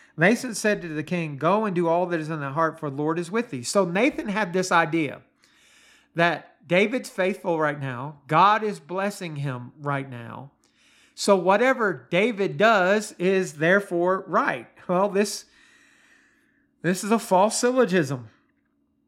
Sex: male